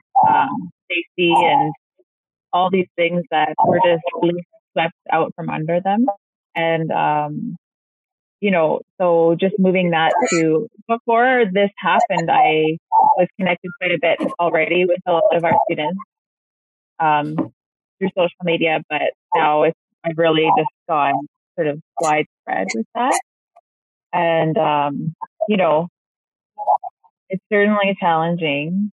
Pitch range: 165-205 Hz